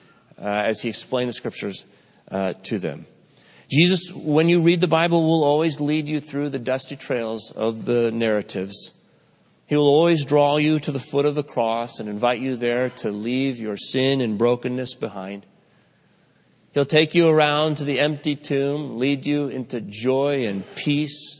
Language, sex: English, male